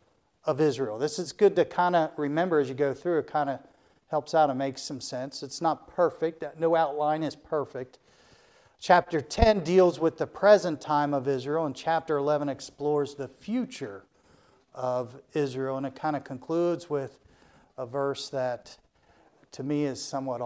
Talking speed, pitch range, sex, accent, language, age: 165 wpm, 130-160 Hz, male, American, English, 50-69